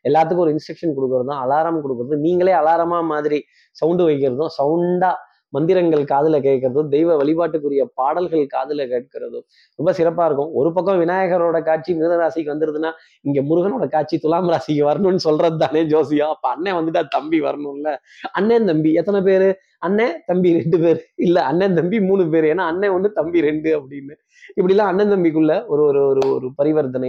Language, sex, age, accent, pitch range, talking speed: Tamil, male, 20-39, native, 145-175 Hz, 175 wpm